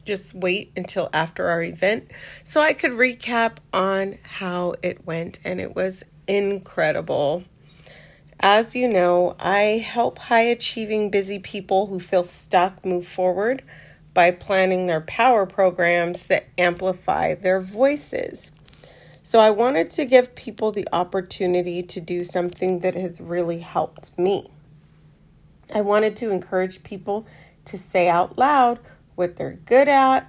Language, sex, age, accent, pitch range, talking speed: English, female, 30-49, American, 175-210 Hz, 135 wpm